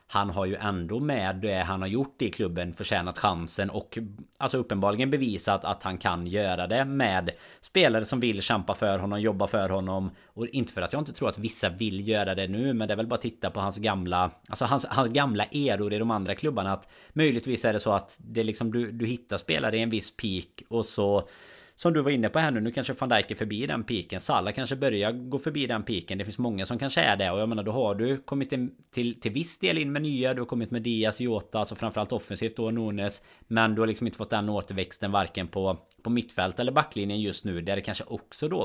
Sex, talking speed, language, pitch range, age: male, 245 wpm, Swedish, 100-120 Hz, 20-39